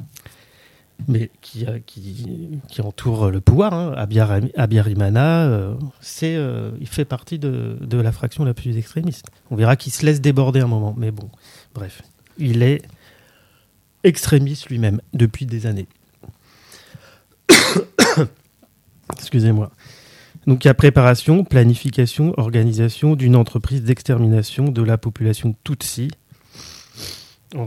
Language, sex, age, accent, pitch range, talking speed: French, male, 30-49, French, 115-140 Hz, 125 wpm